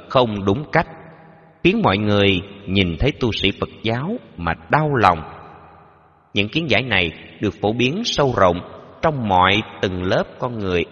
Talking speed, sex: 165 wpm, male